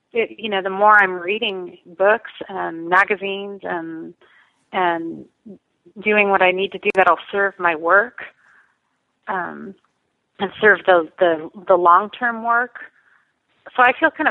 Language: English